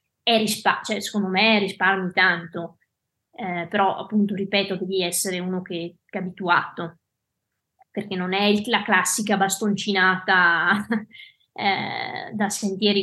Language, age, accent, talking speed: Italian, 20-39, native, 135 wpm